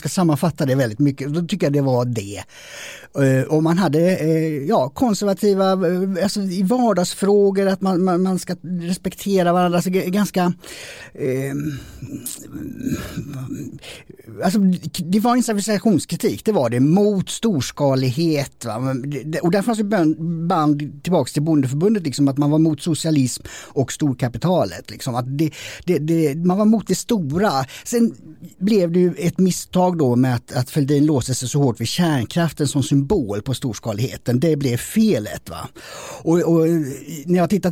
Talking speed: 150 wpm